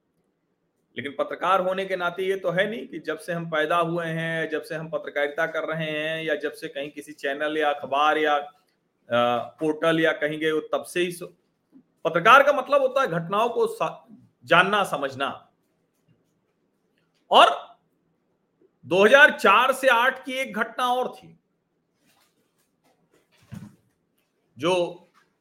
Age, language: 40-59, Hindi